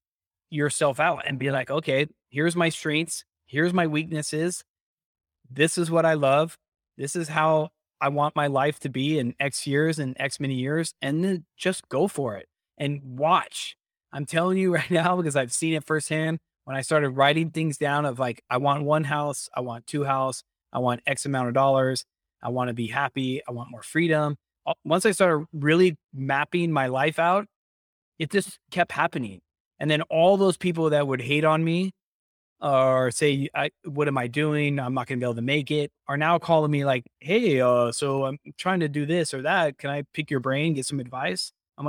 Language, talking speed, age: English, 205 wpm, 20-39